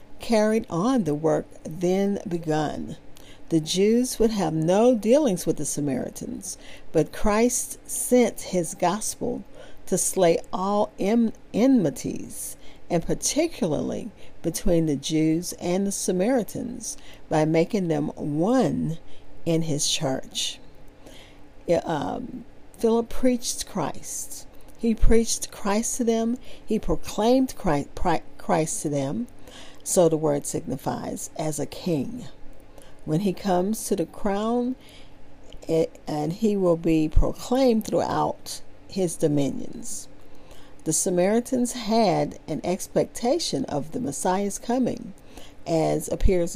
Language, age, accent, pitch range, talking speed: English, 50-69, American, 160-230 Hz, 110 wpm